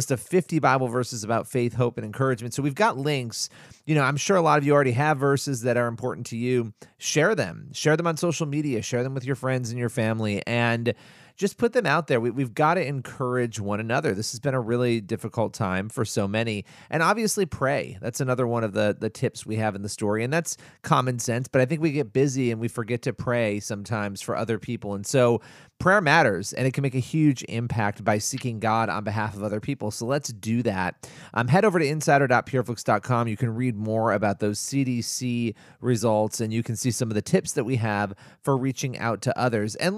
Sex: male